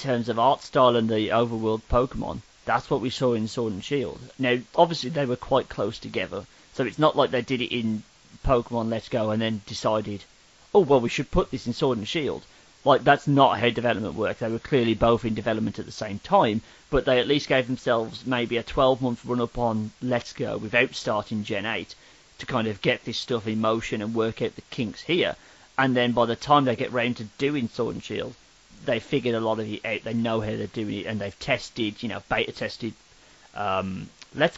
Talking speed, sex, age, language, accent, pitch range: 225 wpm, male, 40-59, English, British, 110-130 Hz